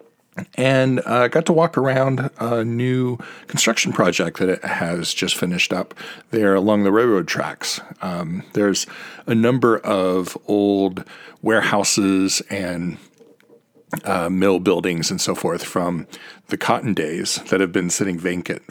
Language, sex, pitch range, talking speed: English, male, 90-105 Hz, 145 wpm